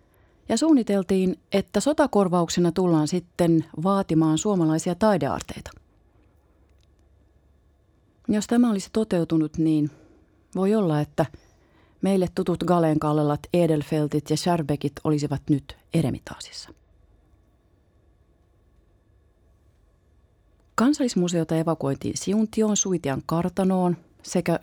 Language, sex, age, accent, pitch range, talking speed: Finnish, female, 30-49, native, 110-180 Hz, 80 wpm